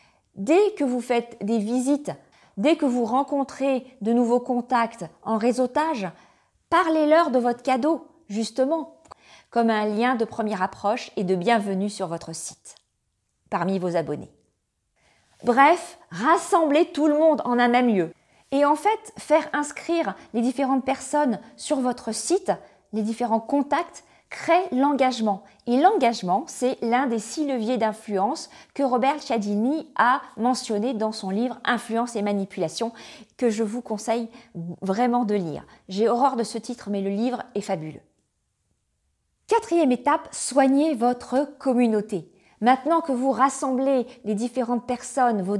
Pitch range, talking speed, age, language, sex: 220-275 Hz, 145 wpm, 40-59, English, female